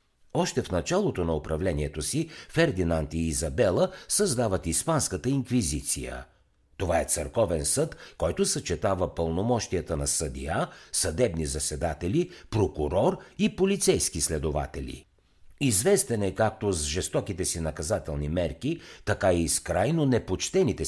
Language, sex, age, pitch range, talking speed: Bulgarian, male, 60-79, 85-140 Hz, 115 wpm